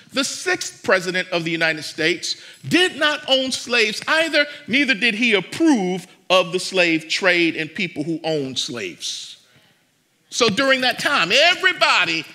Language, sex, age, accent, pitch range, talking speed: English, male, 50-69, American, 175-260 Hz, 145 wpm